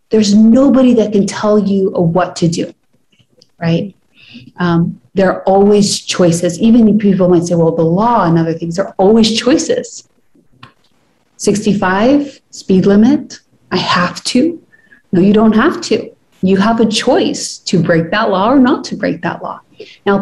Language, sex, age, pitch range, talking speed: English, female, 30-49, 175-230 Hz, 165 wpm